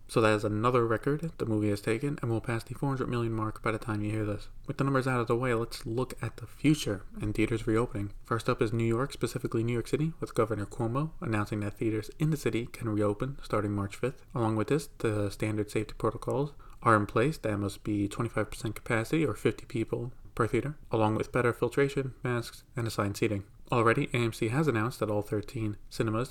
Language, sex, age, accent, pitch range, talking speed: English, male, 20-39, American, 105-125 Hz, 220 wpm